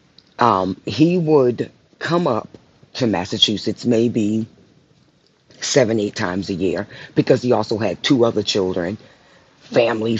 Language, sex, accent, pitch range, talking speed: English, female, American, 100-120 Hz, 125 wpm